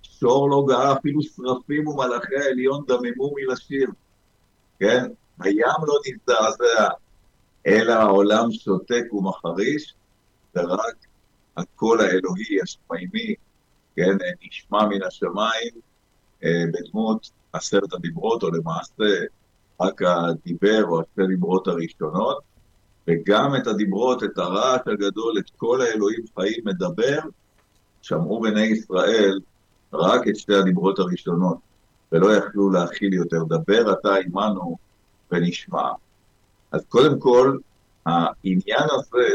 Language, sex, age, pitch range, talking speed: Hebrew, male, 50-69, 95-135 Hz, 105 wpm